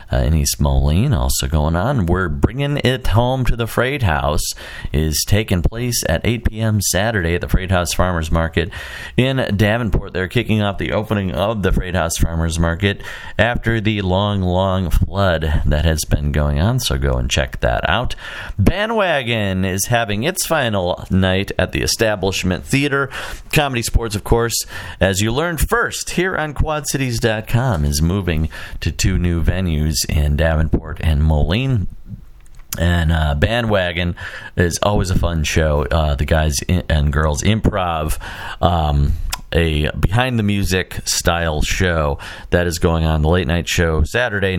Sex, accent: male, American